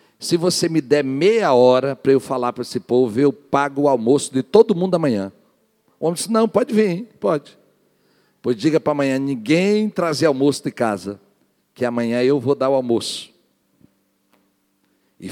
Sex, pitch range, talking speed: male, 125-185 Hz, 170 wpm